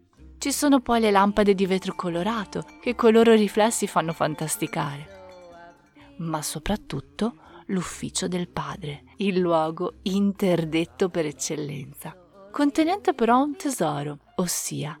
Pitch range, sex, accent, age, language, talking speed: 170-240 Hz, female, native, 30-49, Italian, 115 wpm